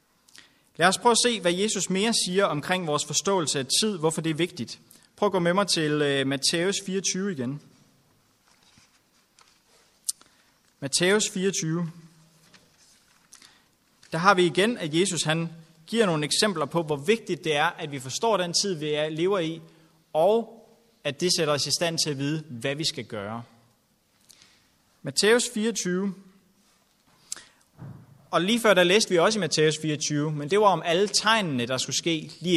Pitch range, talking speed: 150-200 Hz, 165 wpm